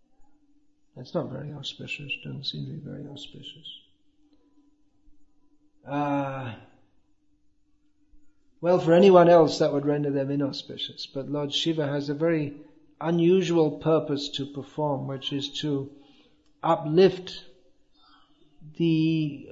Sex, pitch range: male, 140-180 Hz